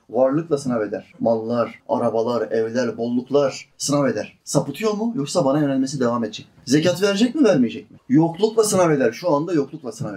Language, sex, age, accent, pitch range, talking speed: Turkish, male, 30-49, native, 125-180 Hz, 165 wpm